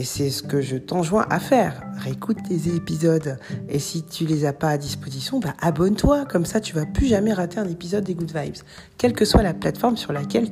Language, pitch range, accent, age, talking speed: French, 155-205 Hz, French, 40-59, 235 wpm